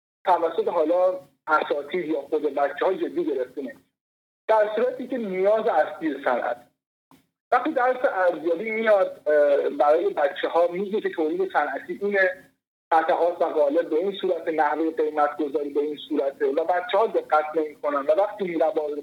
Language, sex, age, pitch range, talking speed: Persian, male, 50-69, 155-255 Hz, 145 wpm